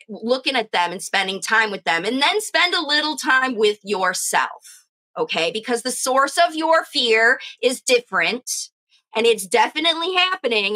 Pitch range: 215-270 Hz